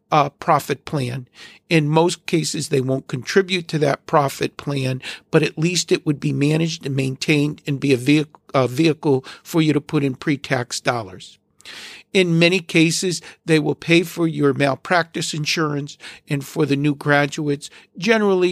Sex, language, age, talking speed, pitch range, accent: male, English, 50-69, 155 wpm, 135-165 Hz, American